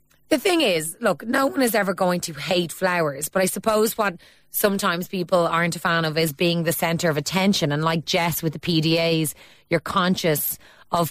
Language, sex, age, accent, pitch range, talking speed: English, female, 30-49, Irish, 160-205 Hz, 200 wpm